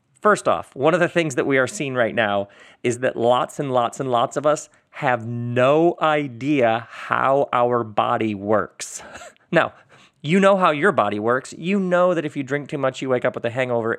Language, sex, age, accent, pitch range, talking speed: English, male, 40-59, American, 115-145 Hz, 210 wpm